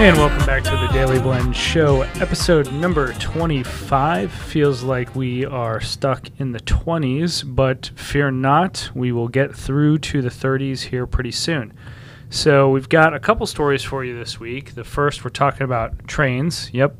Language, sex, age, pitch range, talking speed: English, male, 30-49, 120-145 Hz, 175 wpm